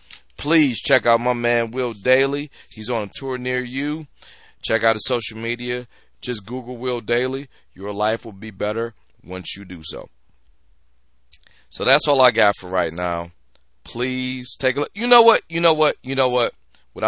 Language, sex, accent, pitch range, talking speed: English, male, American, 85-115 Hz, 185 wpm